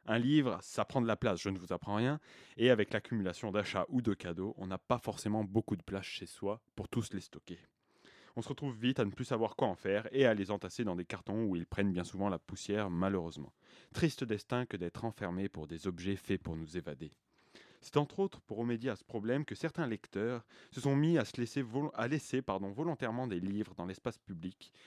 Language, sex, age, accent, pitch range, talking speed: French, male, 30-49, French, 95-130 Hz, 225 wpm